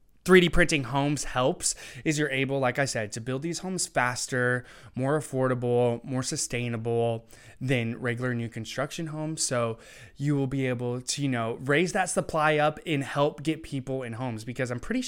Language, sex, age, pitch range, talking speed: English, male, 20-39, 120-150 Hz, 180 wpm